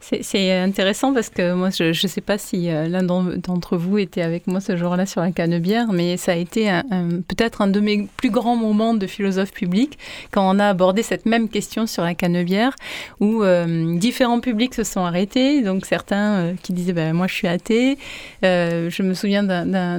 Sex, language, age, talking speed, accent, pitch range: female, French, 30-49, 220 wpm, French, 185-235 Hz